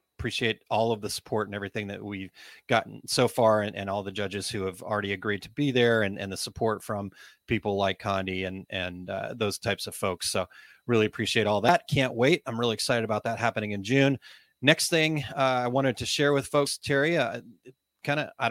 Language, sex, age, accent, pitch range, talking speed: English, male, 30-49, American, 105-130 Hz, 220 wpm